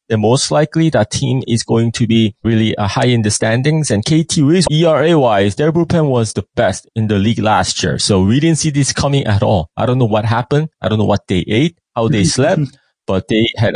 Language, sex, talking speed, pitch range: English, male, 235 wpm, 110-155 Hz